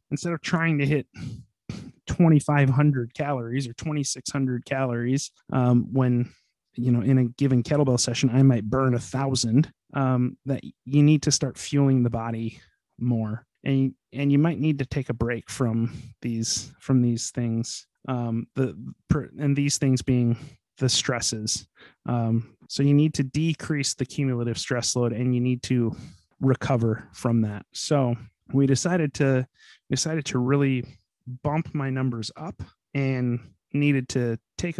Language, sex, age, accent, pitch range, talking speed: English, male, 30-49, American, 120-140 Hz, 155 wpm